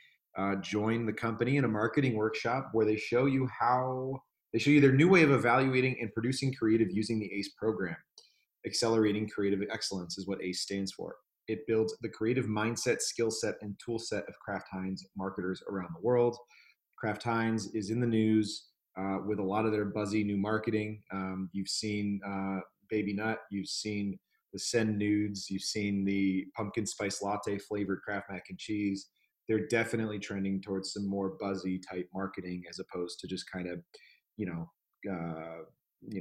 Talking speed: 180 wpm